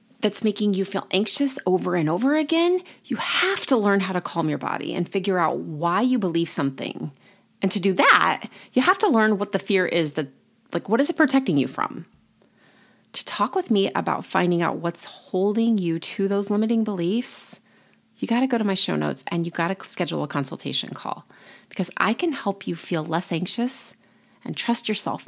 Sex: female